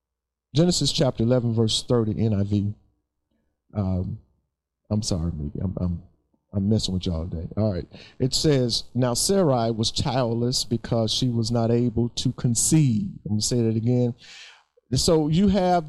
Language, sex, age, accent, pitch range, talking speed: English, male, 50-69, American, 110-150 Hz, 155 wpm